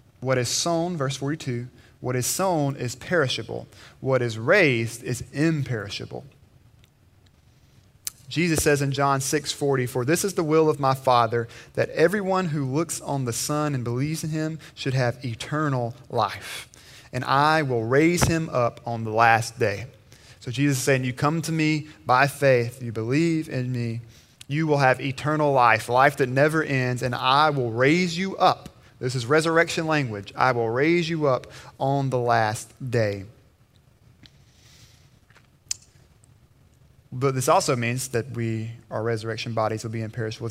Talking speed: 160 wpm